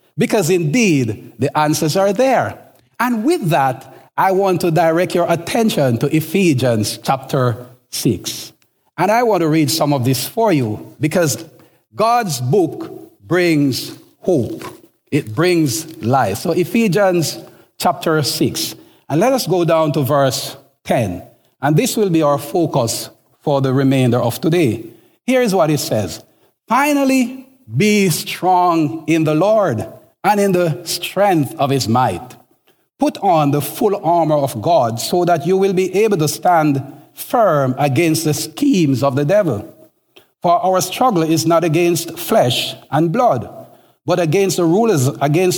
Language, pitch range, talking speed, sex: English, 140-185 Hz, 150 wpm, male